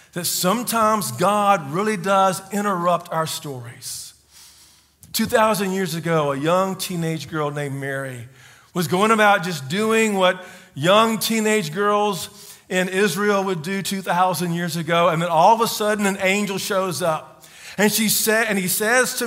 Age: 40-59